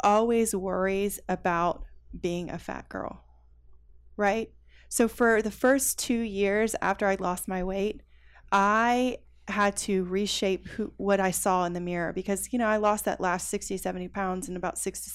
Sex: female